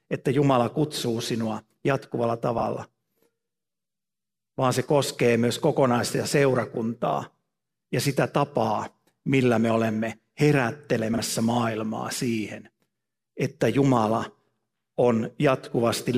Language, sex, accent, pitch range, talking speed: Finnish, male, native, 115-135 Hz, 95 wpm